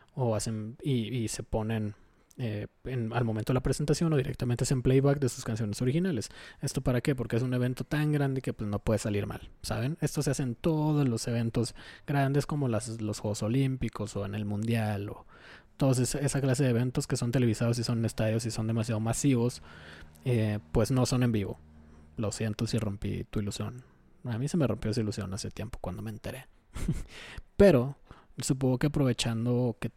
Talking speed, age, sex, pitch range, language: 200 wpm, 20-39, male, 110-130 Hz, Spanish